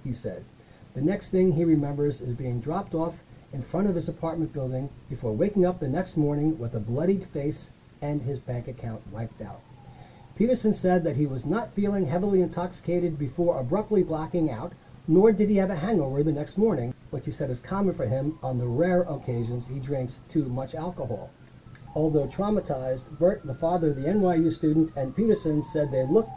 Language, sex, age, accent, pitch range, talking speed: English, male, 40-59, American, 130-175 Hz, 195 wpm